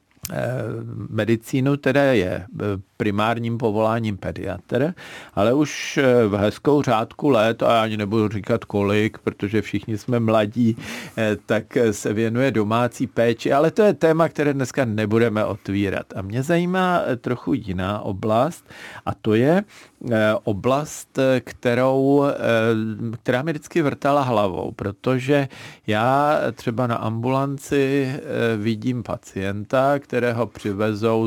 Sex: male